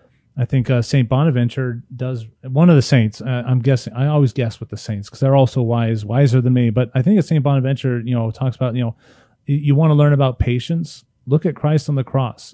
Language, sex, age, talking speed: English, male, 30-49, 240 wpm